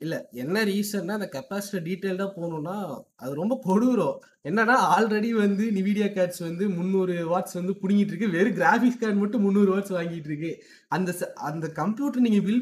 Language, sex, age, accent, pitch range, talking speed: Tamil, male, 20-39, native, 175-235 Hz, 160 wpm